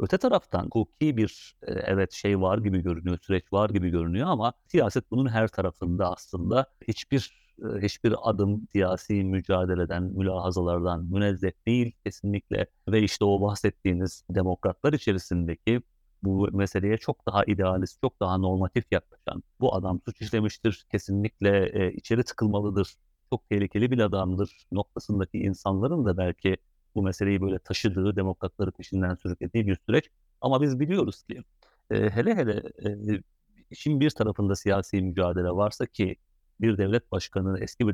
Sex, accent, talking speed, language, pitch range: male, native, 140 wpm, Turkish, 95-110 Hz